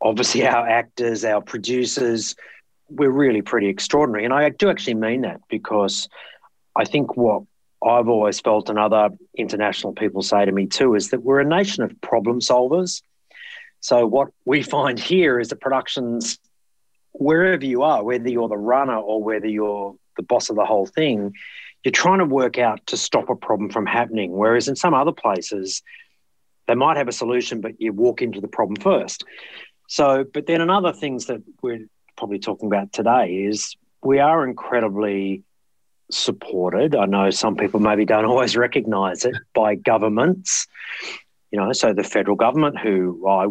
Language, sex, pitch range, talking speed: English, male, 105-135 Hz, 170 wpm